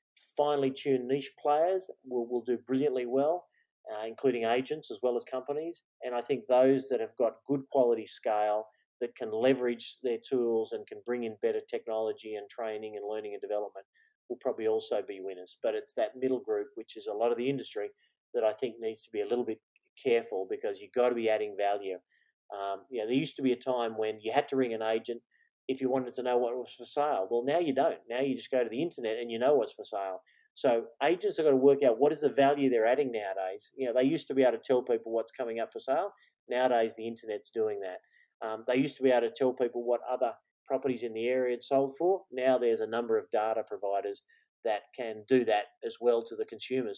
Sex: male